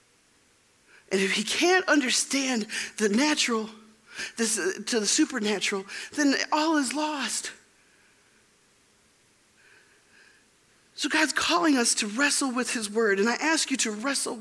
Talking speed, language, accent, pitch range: 130 wpm, English, American, 190-260 Hz